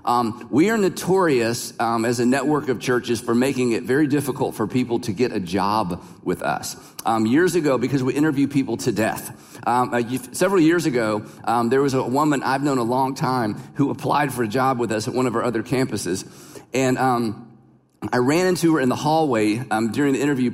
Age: 40-59